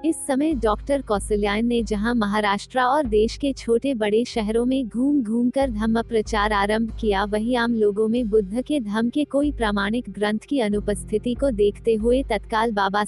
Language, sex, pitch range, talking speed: Hindi, female, 210-255 Hz, 175 wpm